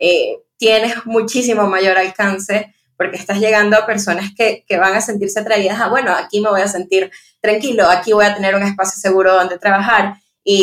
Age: 20-39